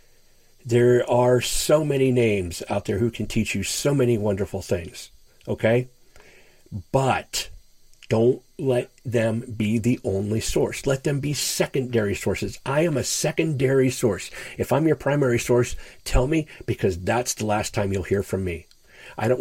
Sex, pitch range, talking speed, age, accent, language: male, 105-130 Hz, 160 wpm, 40-59, American, English